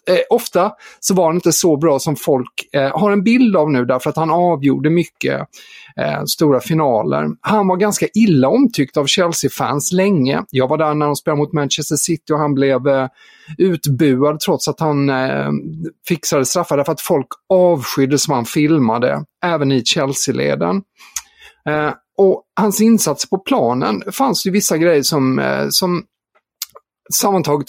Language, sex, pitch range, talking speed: Swedish, male, 145-195 Hz, 165 wpm